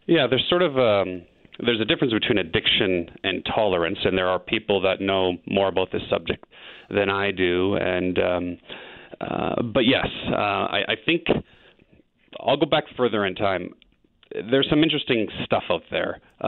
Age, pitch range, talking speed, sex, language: 30-49, 95-125 Hz, 170 wpm, male, English